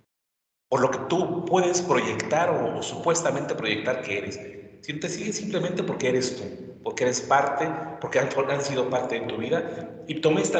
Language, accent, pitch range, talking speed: Spanish, Mexican, 110-145 Hz, 185 wpm